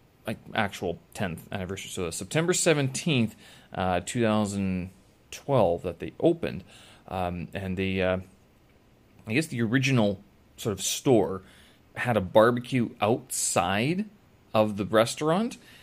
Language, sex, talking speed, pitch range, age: English, male, 120 wpm, 100-125 Hz, 30-49